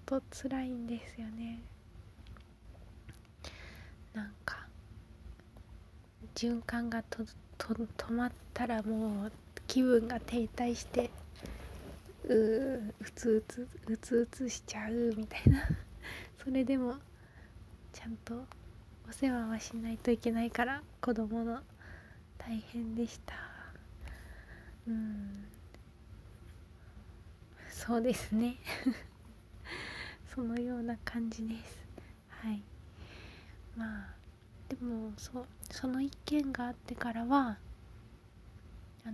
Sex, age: female, 20-39